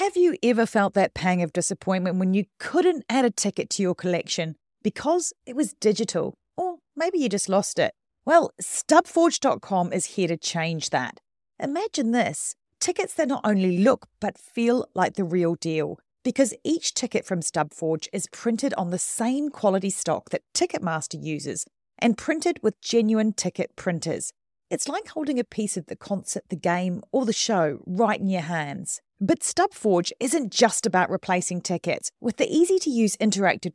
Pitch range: 180-270 Hz